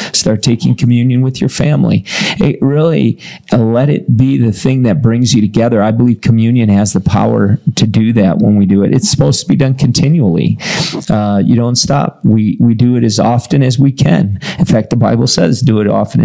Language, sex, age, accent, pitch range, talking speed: English, male, 40-59, American, 110-140 Hz, 215 wpm